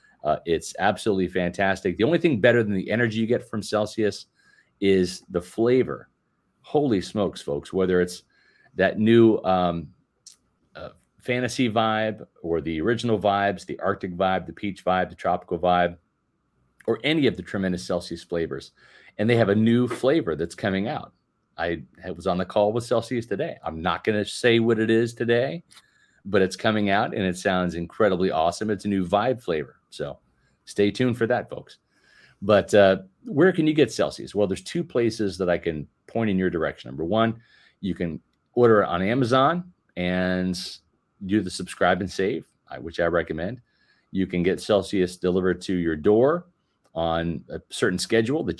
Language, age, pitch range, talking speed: English, 40-59, 90-120 Hz, 175 wpm